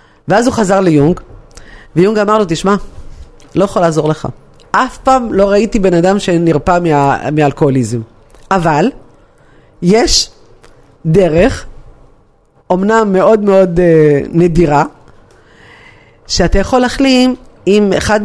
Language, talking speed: Hebrew, 115 wpm